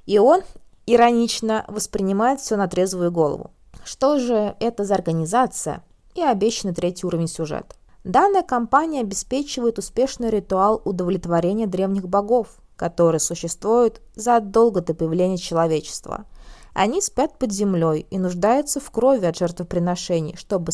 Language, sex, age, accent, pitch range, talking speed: Russian, female, 20-39, native, 180-255 Hz, 125 wpm